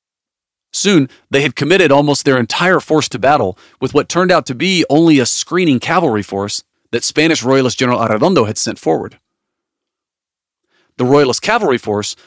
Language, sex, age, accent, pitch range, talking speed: English, male, 40-59, American, 110-155 Hz, 160 wpm